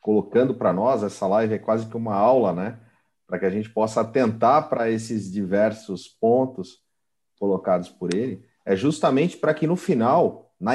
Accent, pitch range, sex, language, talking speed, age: Brazilian, 95-130 Hz, male, Portuguese, 175 wpm, 40-59